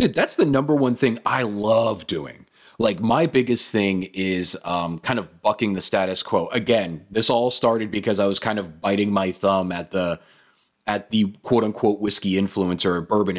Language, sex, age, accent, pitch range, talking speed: English, male, 30-49, American, 90-115 Hz, 190 wpm